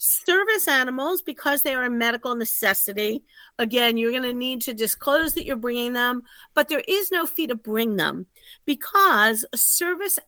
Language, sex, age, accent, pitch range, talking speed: English, female, 50-69, American, 215-290 Hz, 175 wpm